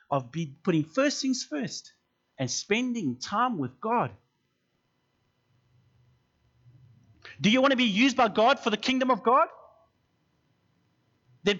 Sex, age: male, 30-49